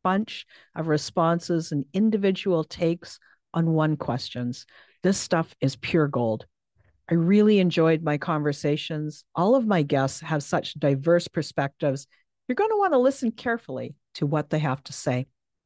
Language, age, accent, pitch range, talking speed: English, 50-69, American, 145-220 Hz, 155 wpm